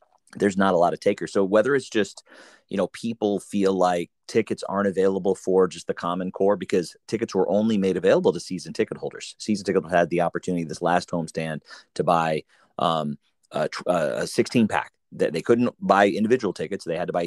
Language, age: English, 30-49